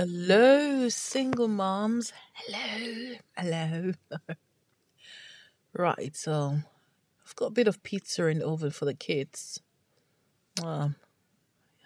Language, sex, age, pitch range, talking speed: English, female, 30-49, 155-205 Hz, 100 wpm